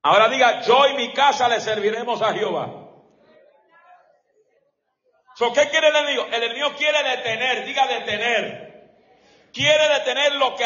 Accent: American